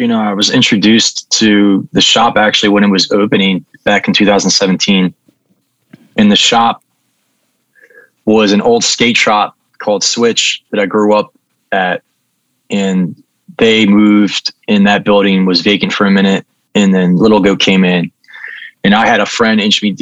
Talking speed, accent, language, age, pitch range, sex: 165 wpm, American, English, 20-39, 95-105 Hz, male